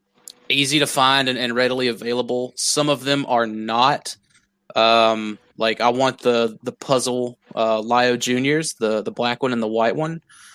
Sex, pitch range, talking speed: male, 115-135 Hz, 170 wpm